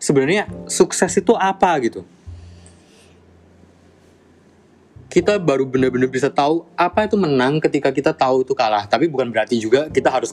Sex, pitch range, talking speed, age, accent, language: male, 105-155 Hz, 140 wpm, 20-39, native, Indonesian